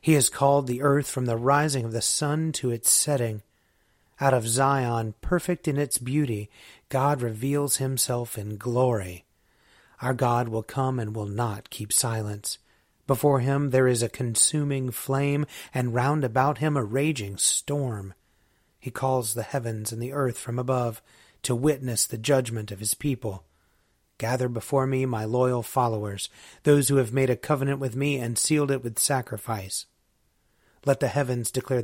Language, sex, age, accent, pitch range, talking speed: English, male, 30-49, American, 110-135 Hz, 165 wpm